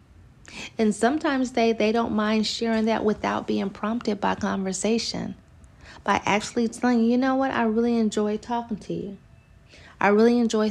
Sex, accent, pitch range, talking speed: female, American, 190-230 Hz, 160 wpm